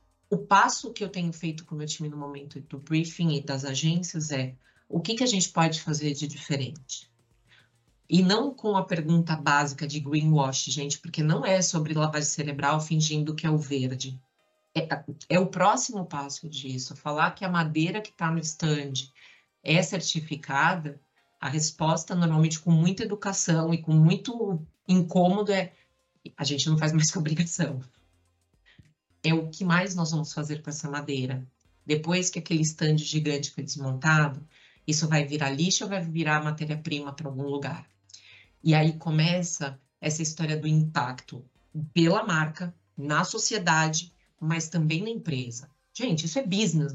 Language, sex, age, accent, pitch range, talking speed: Portuguese, female, 40-59, Brazilian, 145-170 Hz, 165 wpm